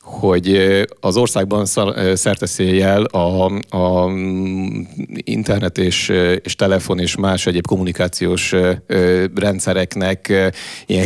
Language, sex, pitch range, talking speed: English, male, 90-105 Hz, 85 wpm